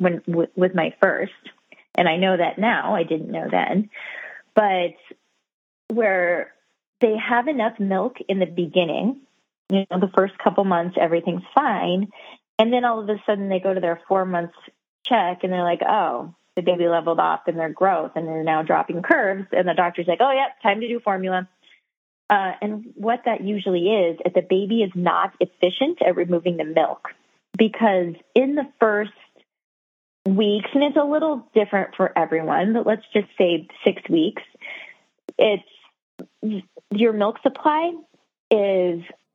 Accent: American